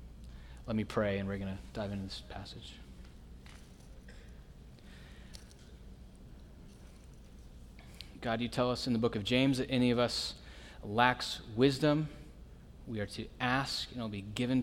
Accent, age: American, 20-39